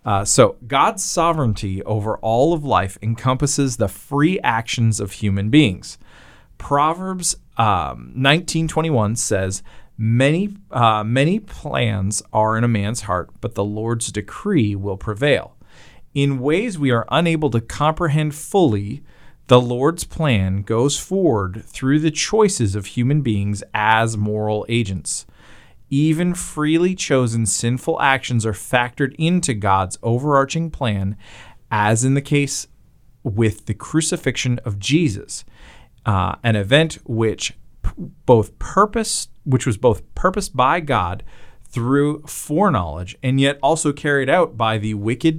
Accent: American